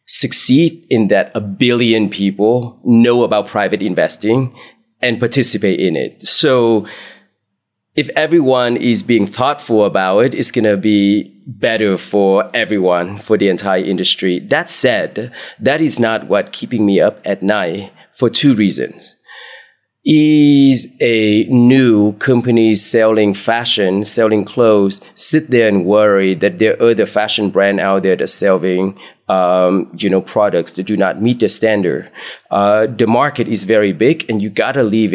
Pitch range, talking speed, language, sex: 100-125 Hz, 155 wpm, English, male